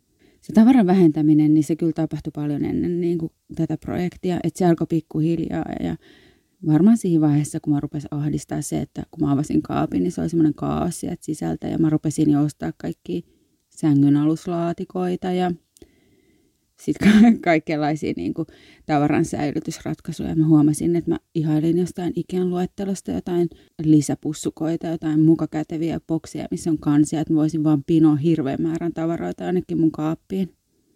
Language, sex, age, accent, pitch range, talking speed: Finnish, female, 30-49, native, 155-180 Hz, 155 wpm